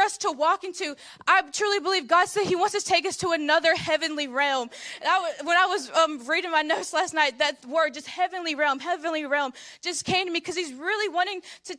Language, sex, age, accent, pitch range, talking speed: English, female, 20-39, American, 295-350 Hz, 225 wpm